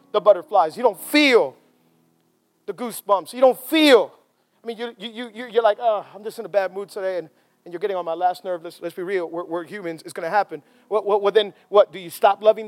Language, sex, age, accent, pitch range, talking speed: English, male, 40-59, American, 205-250 Hz, 250 wpm